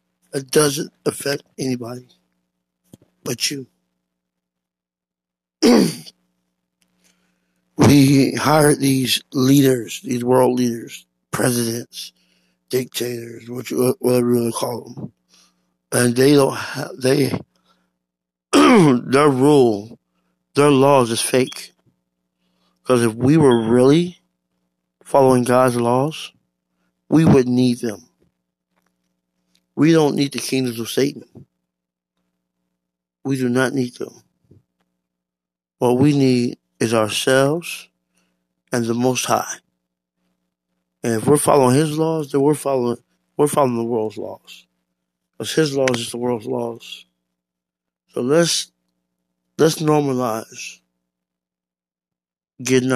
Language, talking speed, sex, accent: English, 100 wpm, male, American